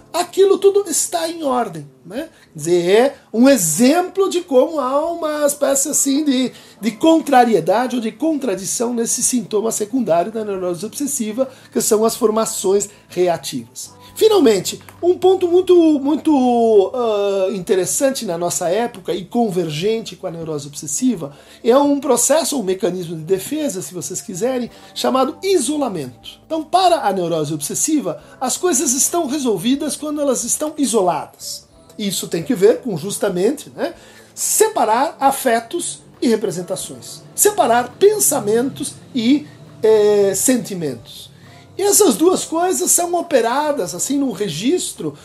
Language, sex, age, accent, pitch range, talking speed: Portuguese, male, 50-69, Brazilian, 195-300 Hz, 130 wpm